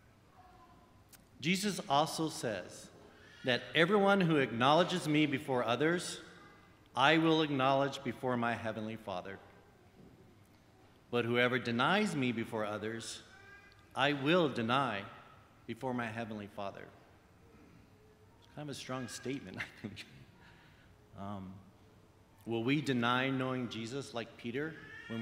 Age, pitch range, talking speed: 40-59, 105-140 Hz, 110 wpm